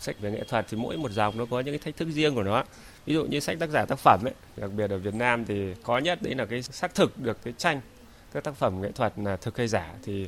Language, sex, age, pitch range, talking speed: Vietnamese, male, 20-39, 105-135 Hz, 305 wpm